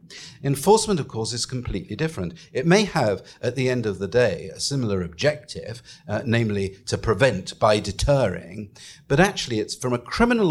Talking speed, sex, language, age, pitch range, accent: 170 wpm, male, English, 50-69, 110-155 Hz, British